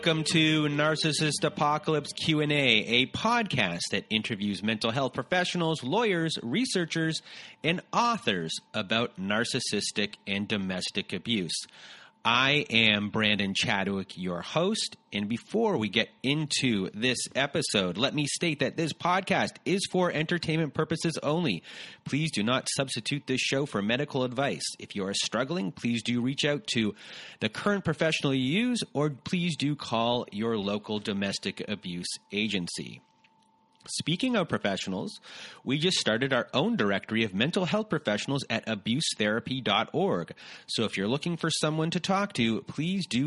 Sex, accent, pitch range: male, American, 115-160 Hz